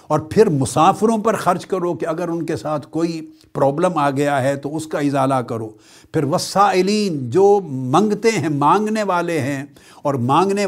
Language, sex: Urdu, male